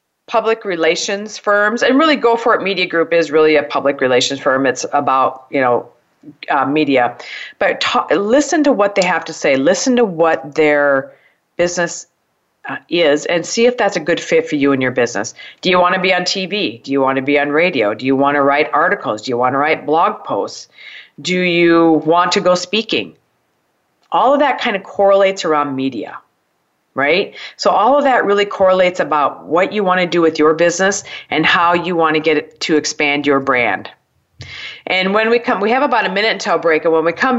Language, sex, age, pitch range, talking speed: English, female, 40-59, 155-205 Hz, 210 wpm